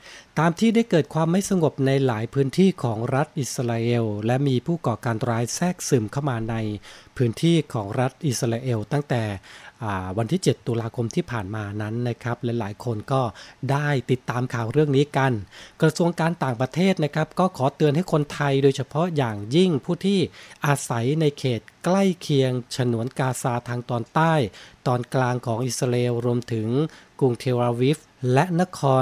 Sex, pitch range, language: male, 120-150 Hz, Thai